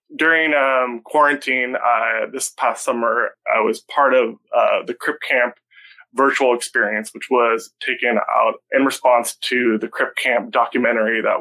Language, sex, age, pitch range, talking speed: English, male, 20-39, 125-155 Hz, 155 wpm